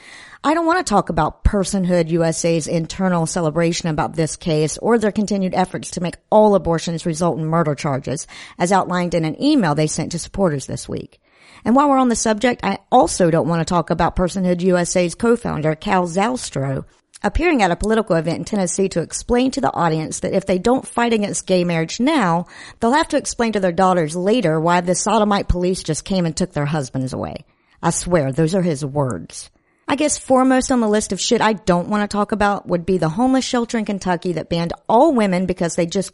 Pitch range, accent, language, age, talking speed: 170-215 Hz, American, English, 50-69, 215 wpm